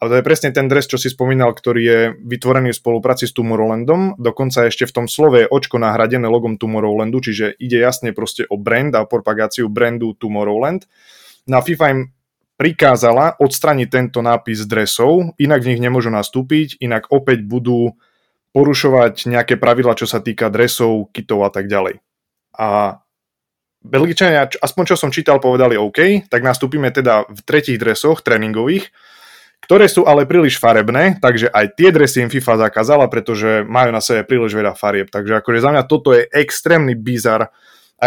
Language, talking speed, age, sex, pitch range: Slovak, 165 wpm, 20-39, male, 110-130 Hz